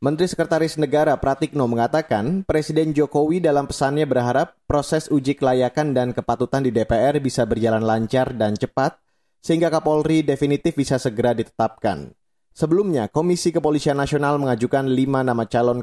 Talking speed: 135 wpm